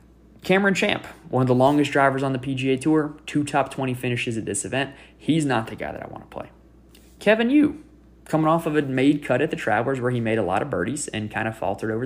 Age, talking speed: 20-39, 250 wpm